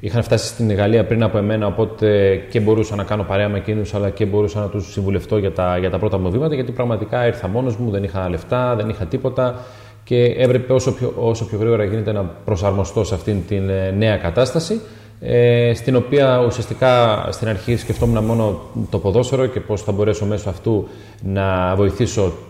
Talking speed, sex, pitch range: 190 wpm, male, 95-115 Hz